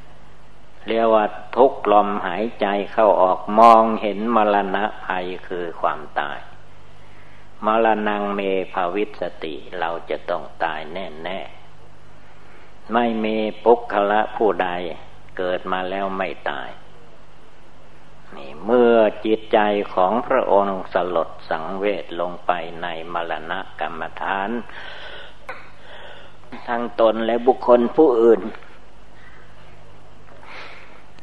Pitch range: 95-115 Hz